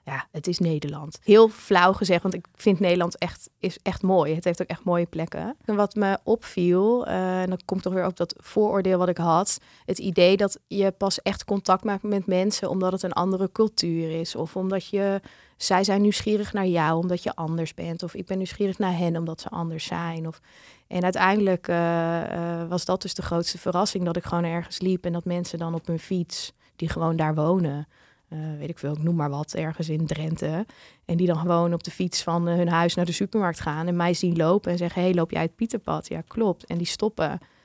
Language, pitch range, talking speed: Dutch, 170-195 Hz, 230 wpm